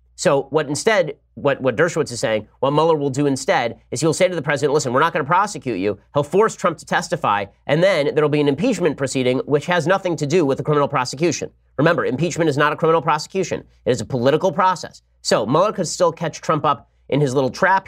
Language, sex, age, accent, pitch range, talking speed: English, male, 30-49, American, 125-150 Hz, 230 wpm